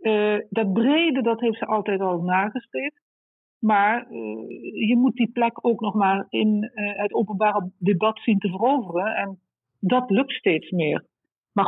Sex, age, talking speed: female, 50-69, 165 wpm